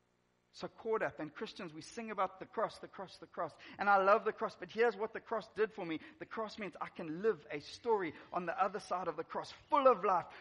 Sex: male